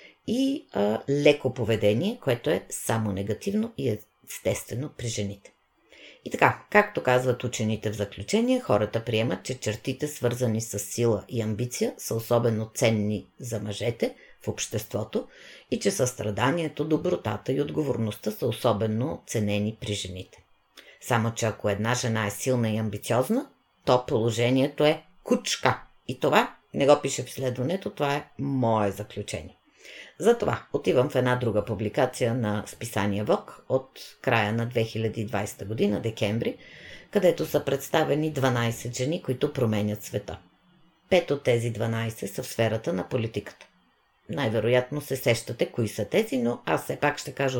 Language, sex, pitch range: Bulgarian, female, 105-135 Hz